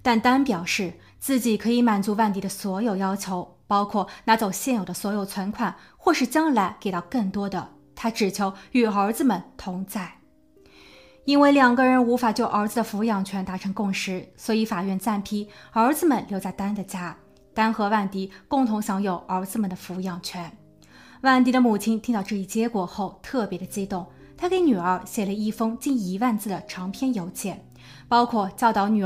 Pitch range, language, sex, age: 190-240 Hz, Chinese, female, 20-39